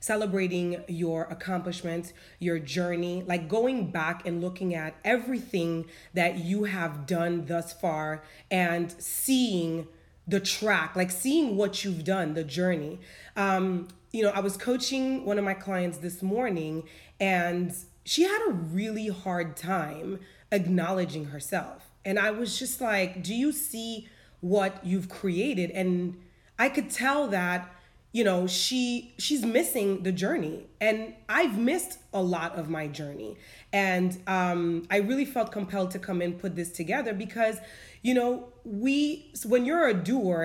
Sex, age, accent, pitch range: female, 30-49, American, 175-225 Hz